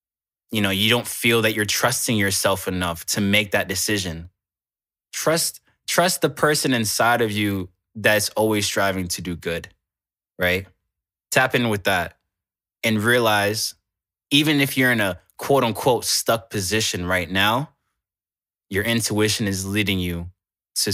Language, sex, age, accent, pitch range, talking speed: English, male, 20-39, American, 90-110 Hz, 145 wpm